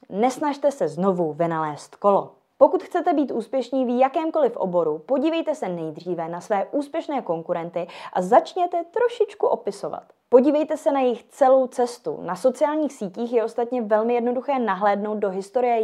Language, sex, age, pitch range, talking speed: Czech, female, 20-39, 185-260 Hz, 150 wpm